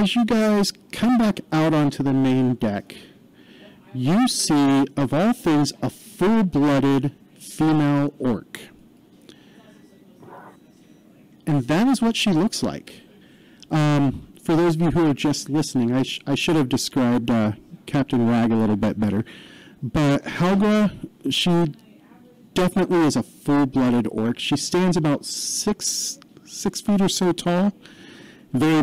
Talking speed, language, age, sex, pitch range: 135 wpm, English, 40-59, male, 135-175 Hz